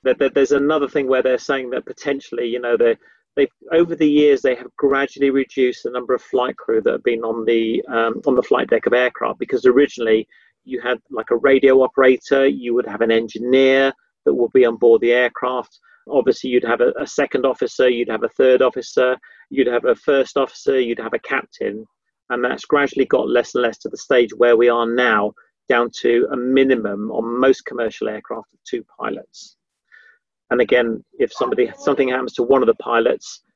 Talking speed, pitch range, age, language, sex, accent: 200 wpm, 120-150 Hz, 40-59, English, male, British